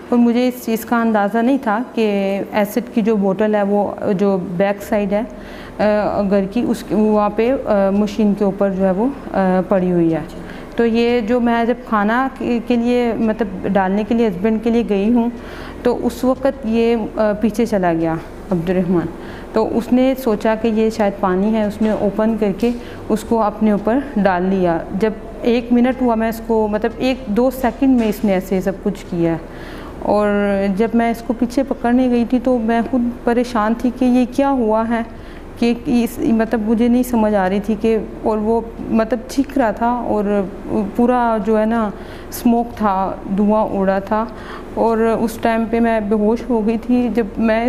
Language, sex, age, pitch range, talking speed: Urdu, female, 30-49, 205-240 Hz, 190 wpm